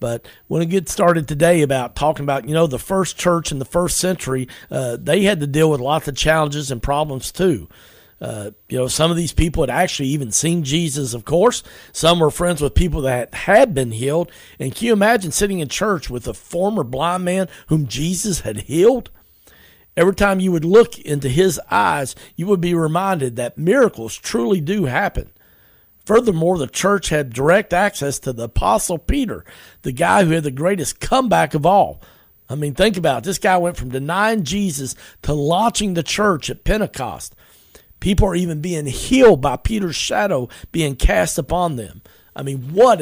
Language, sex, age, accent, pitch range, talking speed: English, male, 50-69, American, 130-185 Hz, 195 wpm